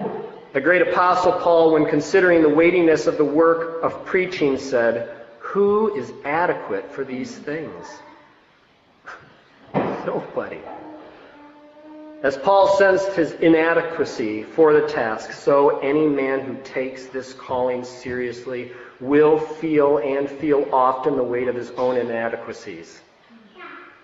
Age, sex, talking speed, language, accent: 40-59, male, 120 wpm, English, American